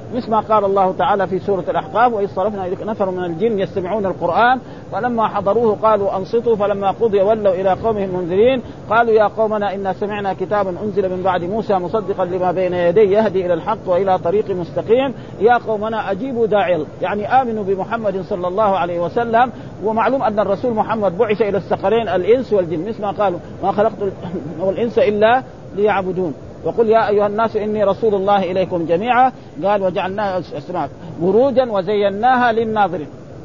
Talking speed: 160 wpm